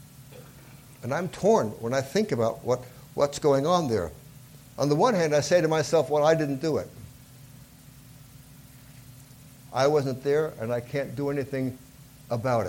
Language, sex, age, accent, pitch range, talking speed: English, male, 60-79, American, 130-145 Hz, 155 wpm